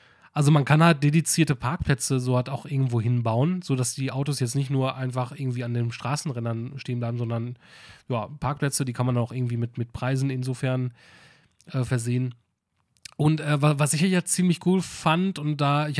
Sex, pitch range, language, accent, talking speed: male, 130-165 Hz, German, German, 190 wpm